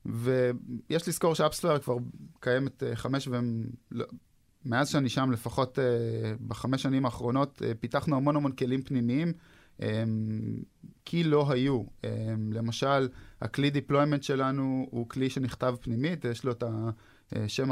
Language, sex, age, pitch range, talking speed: Hebrew, male, 20-39, 120-140 Hz, 135 wpm